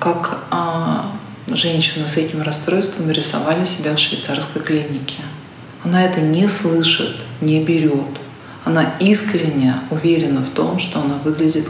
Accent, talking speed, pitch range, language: native, 130 wpm, 135-165 Hz, Russian